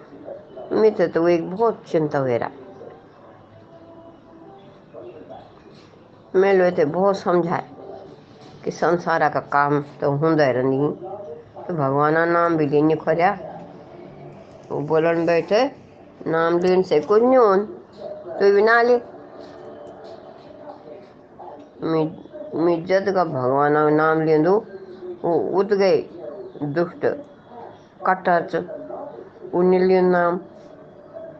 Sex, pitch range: female, 155-195 Hz